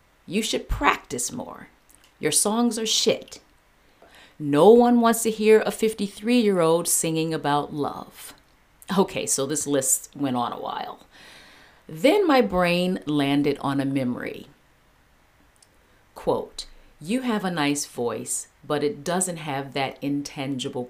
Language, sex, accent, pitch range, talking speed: Ukrainian, female, American, 135-195 Hz, 130 wpm